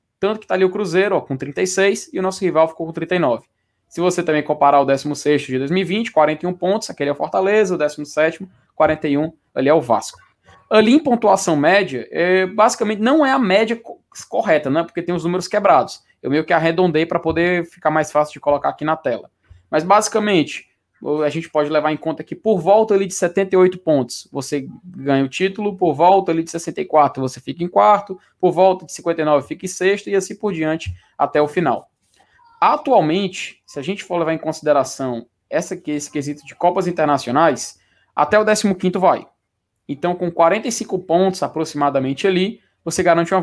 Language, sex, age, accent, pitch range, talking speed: Portuguese, male, 20-39, Brazilian, 145-190 Hz, 185 wpm